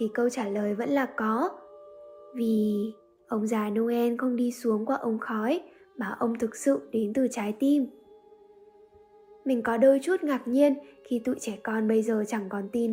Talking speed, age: 185 wpm, 10-29